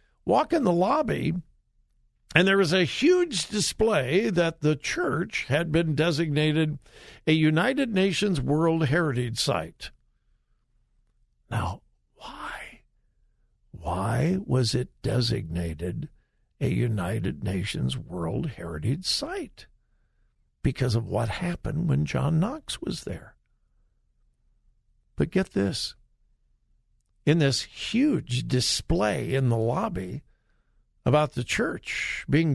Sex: male